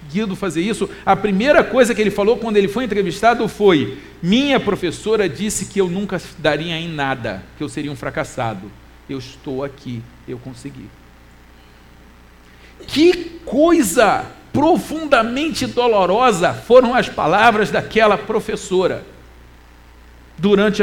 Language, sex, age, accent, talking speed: Portuguese, male, 50-69, Brazilian, 120 wpm